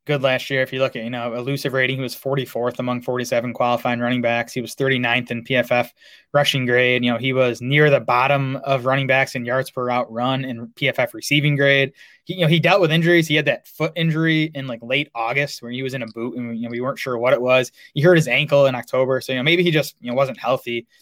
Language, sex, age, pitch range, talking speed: English, male, 20-39, 125-145 Hz, 265 wpm